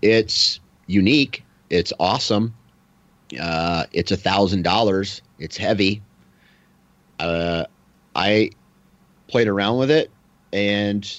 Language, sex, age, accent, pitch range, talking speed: English, male, 30-49, American, 100-125 Hz, 85 wpm